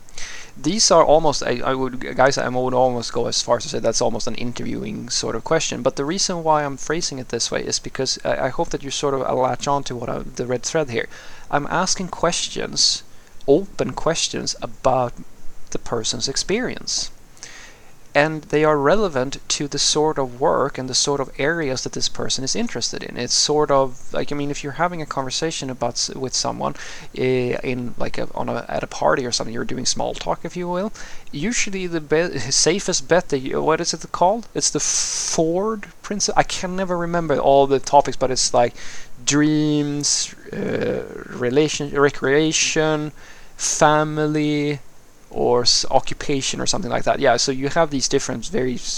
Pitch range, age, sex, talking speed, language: 130-165 Hz, 20-39, male, 190 wpm, English